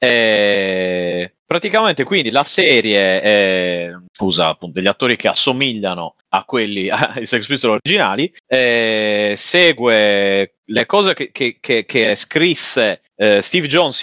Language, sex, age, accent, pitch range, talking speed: Italian, male, 30-49, native, 95-125 Hz, 120 wpm